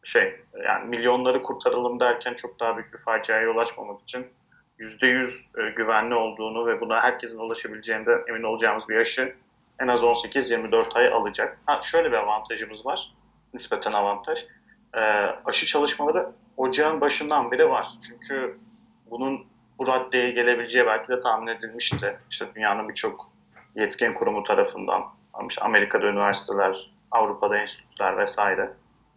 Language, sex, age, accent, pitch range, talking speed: English, male, 30-49, Turkish, 115-150 Hz, 130 wpm